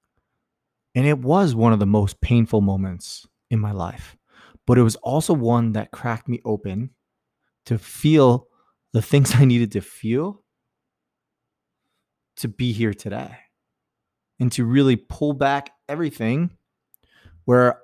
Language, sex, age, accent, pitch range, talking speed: English, male, 20-39, American, 110-130 Hz, 135 wpm